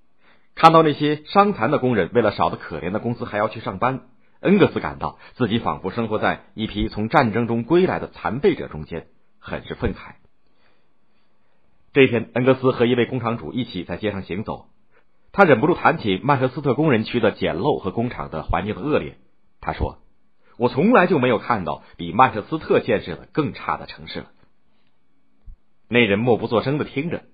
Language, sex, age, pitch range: Chinese, male, 50-69, 95-130 Hz